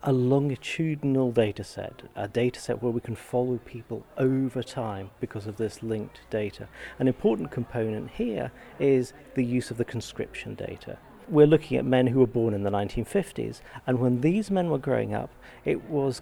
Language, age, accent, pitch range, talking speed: English, 40-59, British, 115-130 Hz, 180 wpm